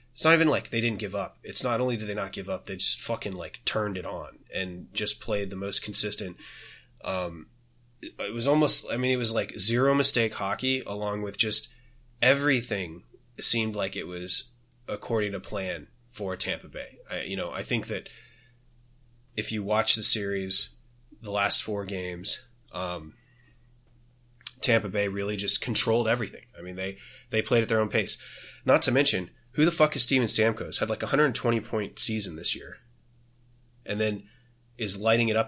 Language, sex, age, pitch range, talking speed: English, male, 30-49, 100-120 Hz, 185 wpm